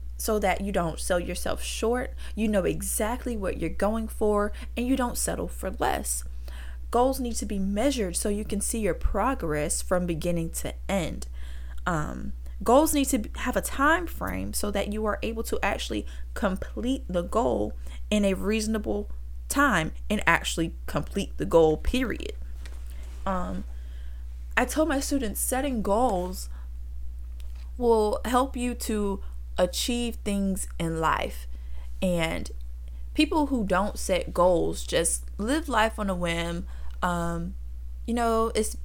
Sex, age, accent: female, 20-39, American